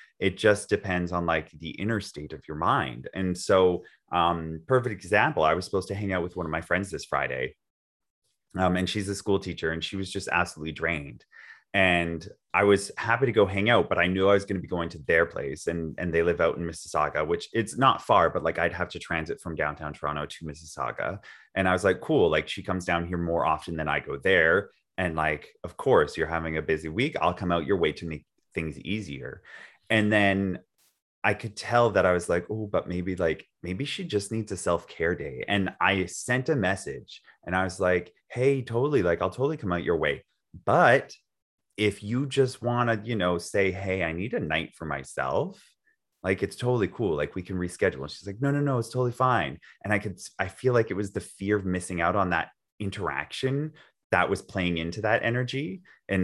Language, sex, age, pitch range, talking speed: English, male, 30-49, 85-105 Hz, 225 wpm